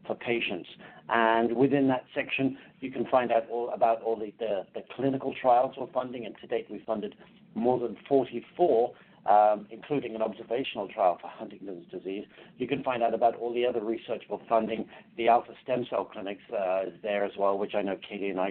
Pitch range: 110-130 Hz